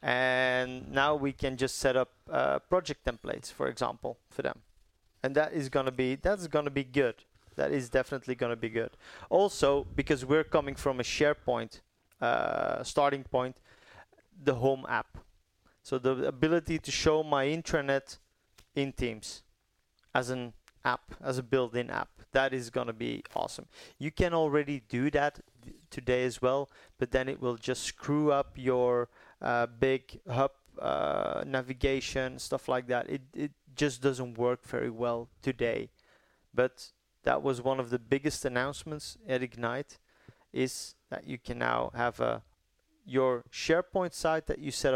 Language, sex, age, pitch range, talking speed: English, male, 30-49, 125-140 Hz, 165 wpm